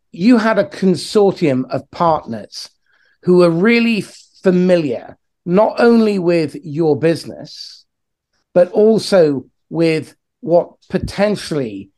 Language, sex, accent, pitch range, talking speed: English, male, British, 140-180 Hz, 100 wpm